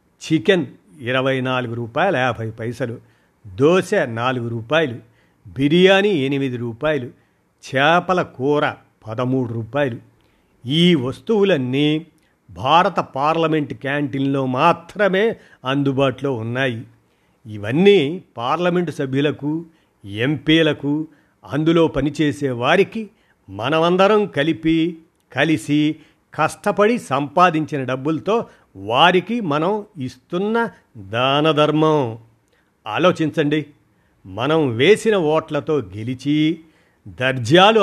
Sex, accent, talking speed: male, native, 75 wpm